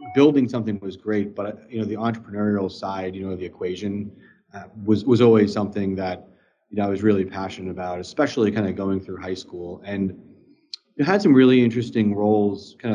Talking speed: 195 wpm